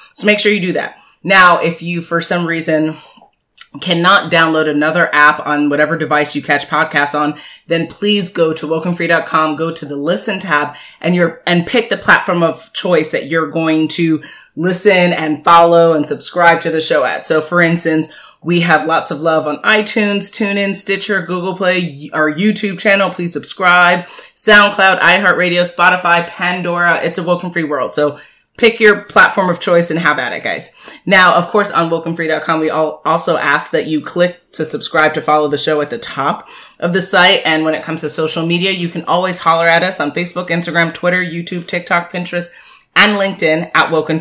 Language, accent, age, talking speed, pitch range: English, American, 30-49, 190 wpm, 155-185 Hz